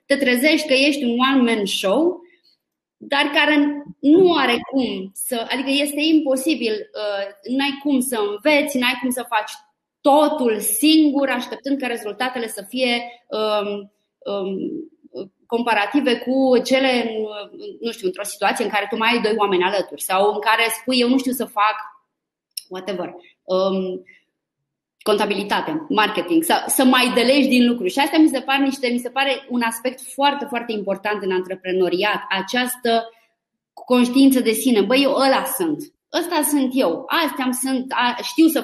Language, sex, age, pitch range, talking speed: Romanian, female, 20-39, 215-280 Hz, 155 wpm